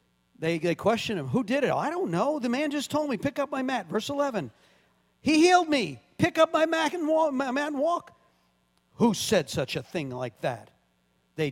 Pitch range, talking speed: 130-205 Hz, 200 wpm